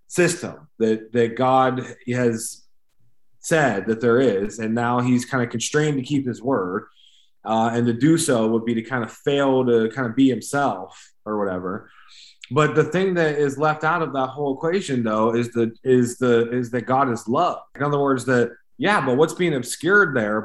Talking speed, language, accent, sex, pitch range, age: 200 wpm, English, American, male, 115-130 Hz, 20-39